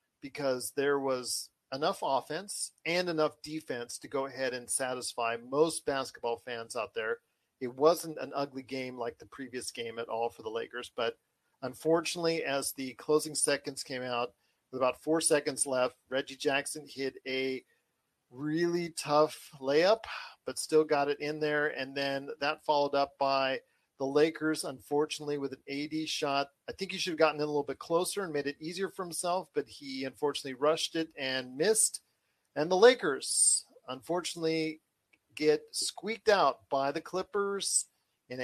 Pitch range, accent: 135-165 Hz, American